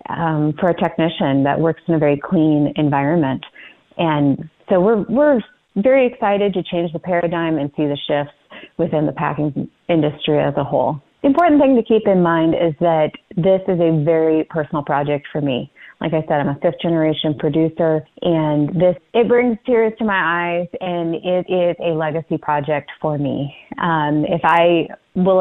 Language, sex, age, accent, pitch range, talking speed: English, female, 30-49, American, 150-180 Hz, 180 wpm